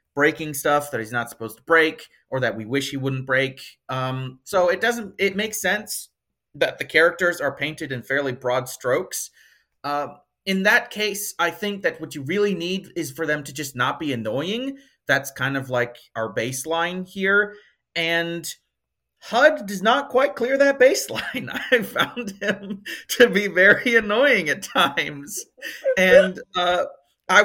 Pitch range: 145-225 Hz